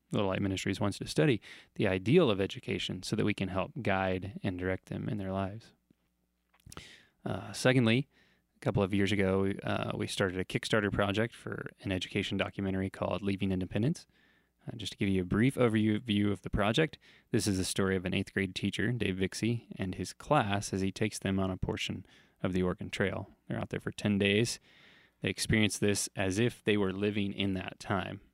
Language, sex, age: English, male, 20-39